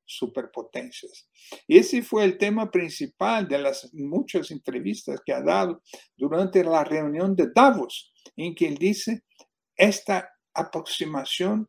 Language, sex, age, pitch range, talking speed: Spanish, male, 60-79, 170-255 Hz, 130 wpm